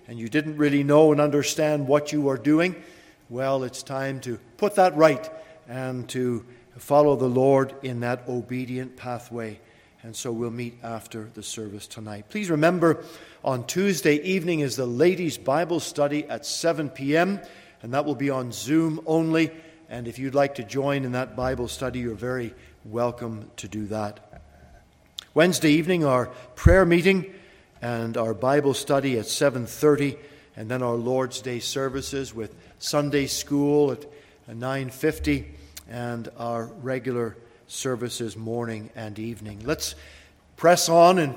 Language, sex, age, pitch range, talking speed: English, male, 50-69, 120-155 Hz, 150 wpm